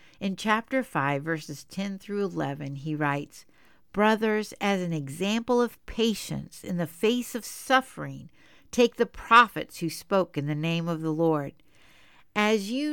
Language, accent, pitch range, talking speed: English, American, 170-240 Hz, 155 wpm